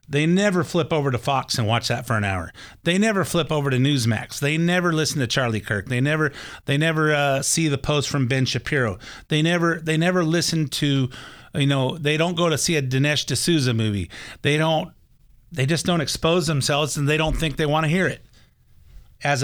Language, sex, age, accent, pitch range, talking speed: English, male, 50-69, American, 125-165 Hz, 215 wpm